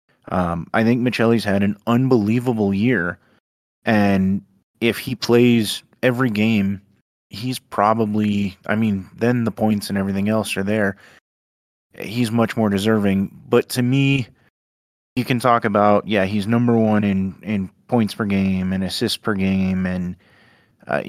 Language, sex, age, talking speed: English, male, 20-39, 150 wpm